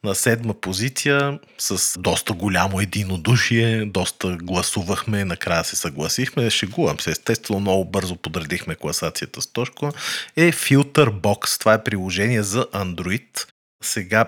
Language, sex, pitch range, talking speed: Bulgarian, male, 95-115 Hz, 120 wpm